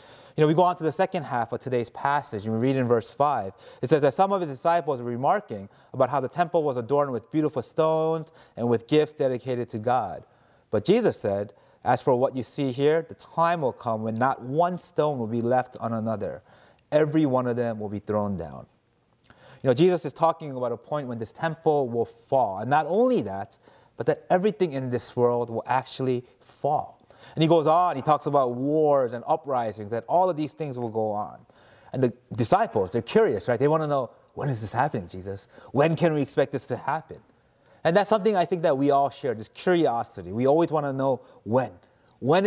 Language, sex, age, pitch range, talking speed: English, male, 30-49, 120-160 Hz, 220 wpm